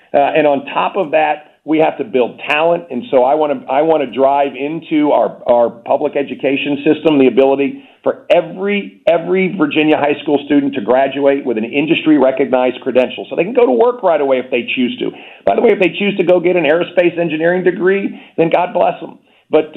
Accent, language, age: American, English, 50-69